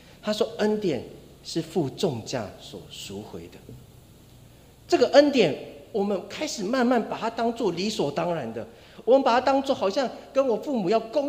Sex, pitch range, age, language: male, 145-230 Hz, 40-59, Chinese